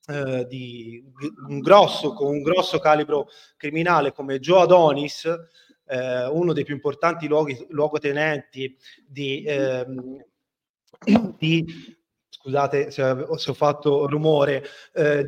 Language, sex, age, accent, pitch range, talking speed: Italian, male, 30-49, native, 145-185 Hz, 105 wpm